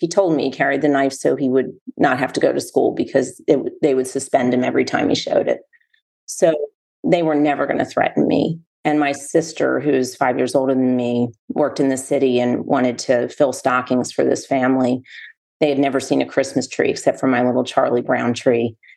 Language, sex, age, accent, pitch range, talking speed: English, female, 40-59, American, 125-145 Hz, 220 wpm